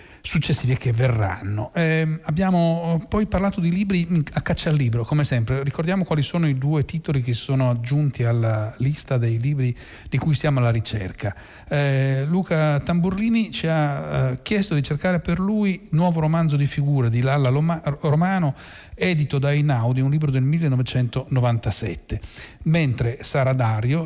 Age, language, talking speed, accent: 40-59, Italian, 150 wpm, native